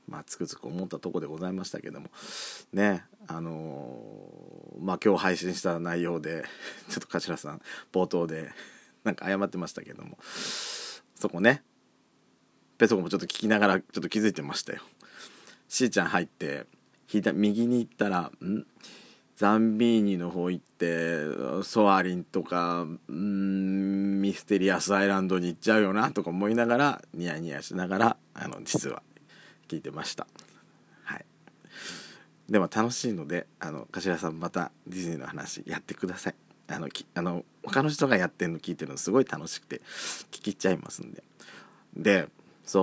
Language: Japanese